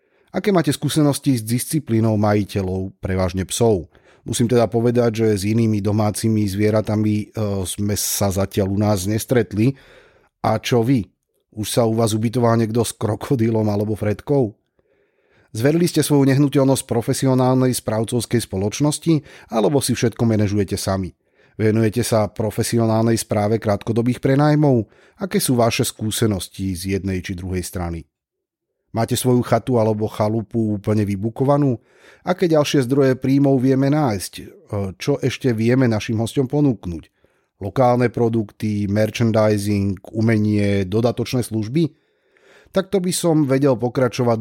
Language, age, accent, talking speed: Czech, 30-49, native, 125 wpm